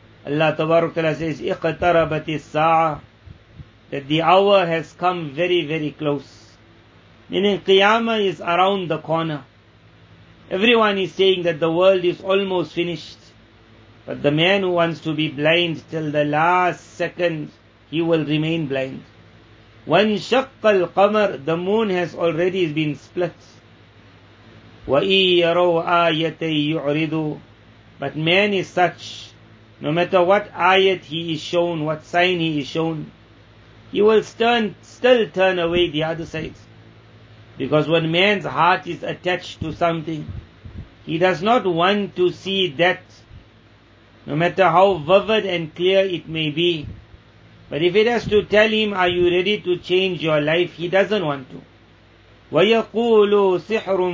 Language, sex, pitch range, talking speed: English, male, 115-180 Hz, 125 wpm